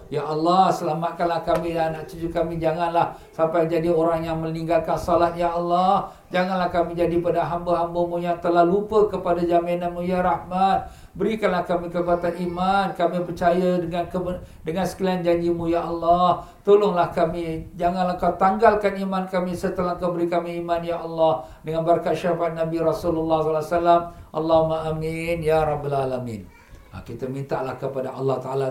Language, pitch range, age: Malay, 170-200 Hz, 50-69